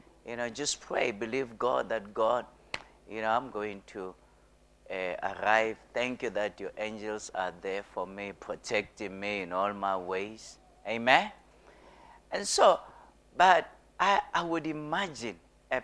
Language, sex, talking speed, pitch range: English, male, 145 wpm, 100-125 Hz